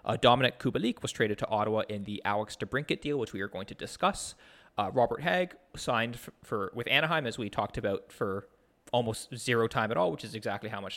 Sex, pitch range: male, 115-160 Hz